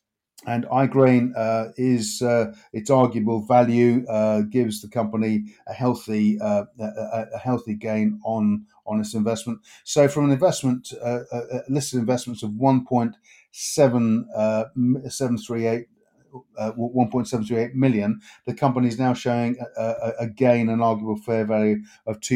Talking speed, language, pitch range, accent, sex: 130 wpm, English, 115-130 Hz, British, male